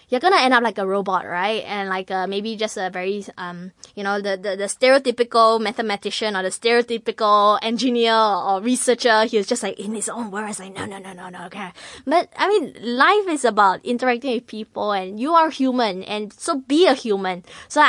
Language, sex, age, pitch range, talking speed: English, female, 10-29, 205-260 Hz, 210 wpm